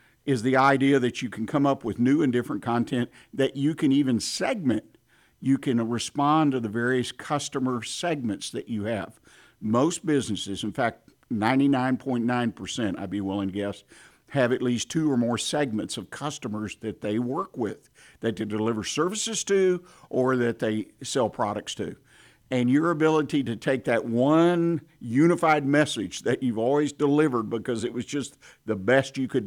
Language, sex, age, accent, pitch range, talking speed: English, male, 50-69, American, 115-140 Hz, 170 wpm